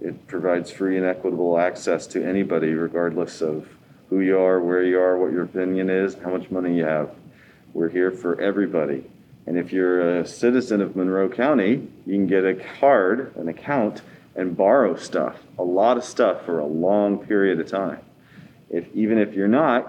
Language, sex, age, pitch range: English, male, 40-59, 85-100 Hz